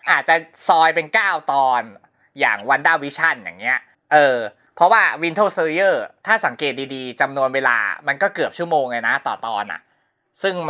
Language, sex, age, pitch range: Thai, male, 20-39, 135-190 Hz